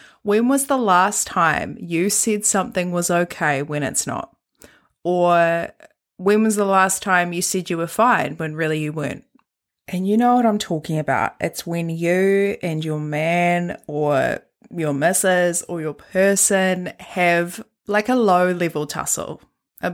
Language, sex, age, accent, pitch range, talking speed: English, female, 20-39, Australian, 170-215 Hz, 165 wpm